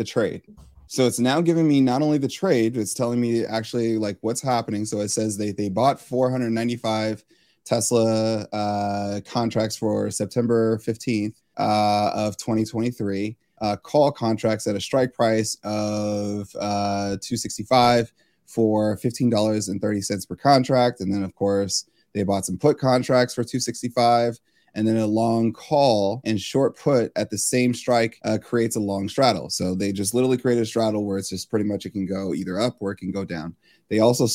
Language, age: English, 20-39